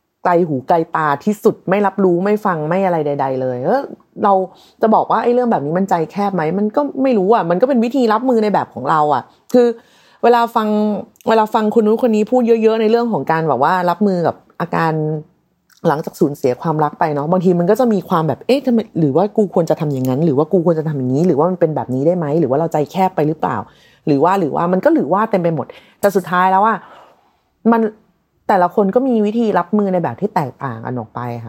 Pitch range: 160-220 Hz